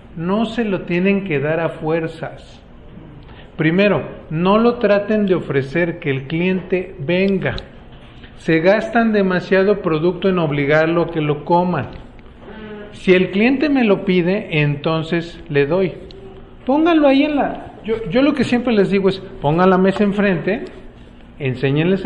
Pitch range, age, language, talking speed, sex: 160-200 Hz, 40-59, Spanish, 145 wpm, male